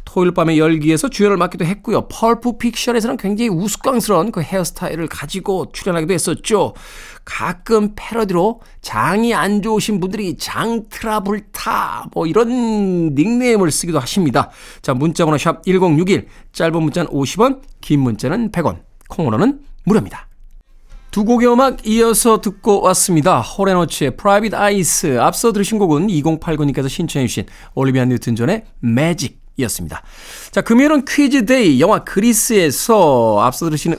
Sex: male